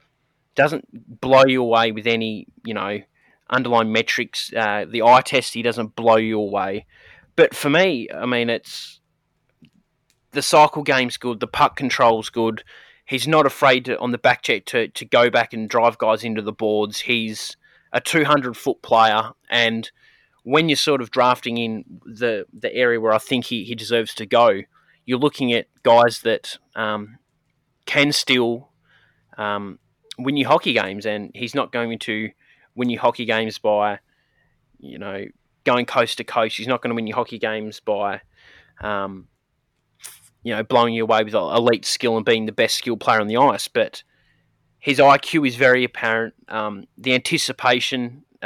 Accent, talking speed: Australian, 170 wpm